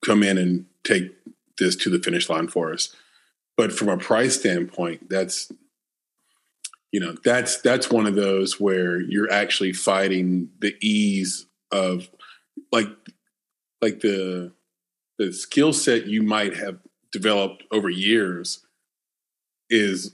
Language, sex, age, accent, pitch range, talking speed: English, male, 30-49, American, 95-120 Hz, 130 wpm